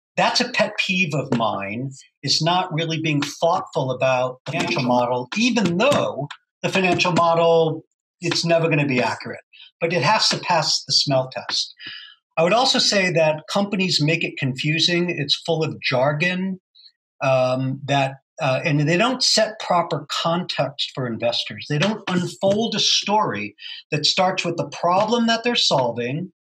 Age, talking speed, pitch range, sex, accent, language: 50-69, 160 wpm, 150-195 Hz, male, American, English